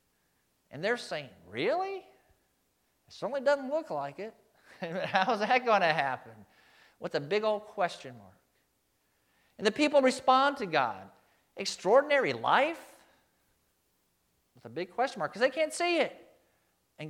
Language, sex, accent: English, male, American